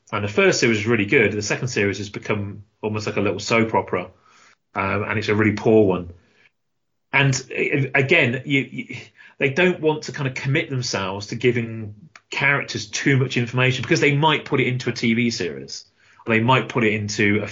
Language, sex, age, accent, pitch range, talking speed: English, male, 30-49, British, 105-130 Hz, 200 wpm